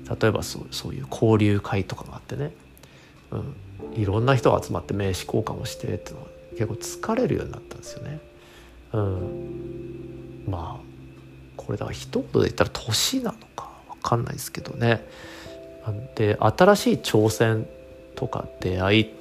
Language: Japanese